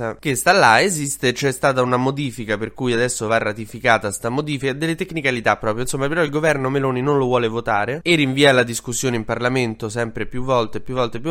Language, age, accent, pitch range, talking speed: Italian, 20-39, native, 115-145 Hz, 210 wpm